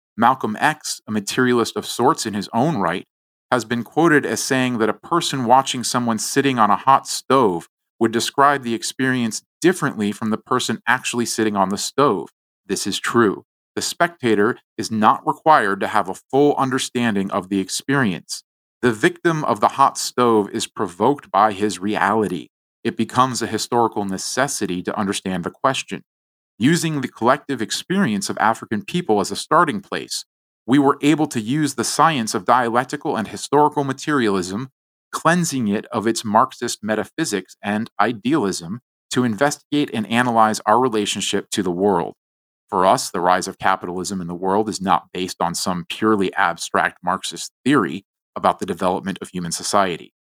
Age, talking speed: 40-59, 165 wpm